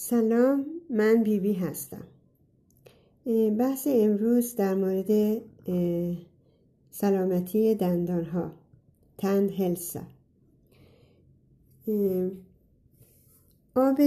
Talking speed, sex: 60 wpm, female